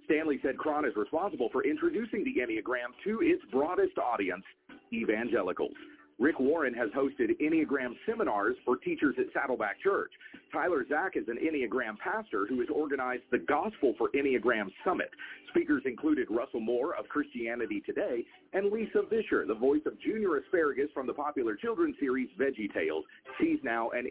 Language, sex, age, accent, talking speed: English, male, 40-59, American, 160 wpm